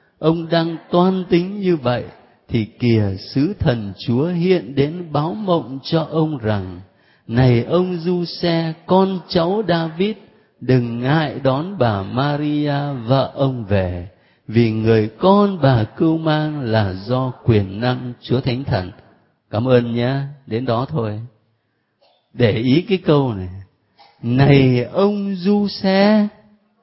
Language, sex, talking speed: Vietnamese, male, 135 wpm